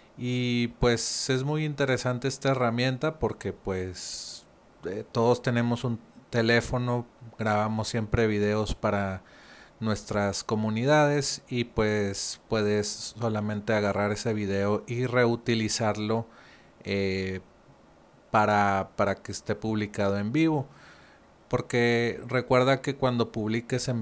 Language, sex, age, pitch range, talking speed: Spanish, male, 30-49, 100-120 Hz, 105 wpm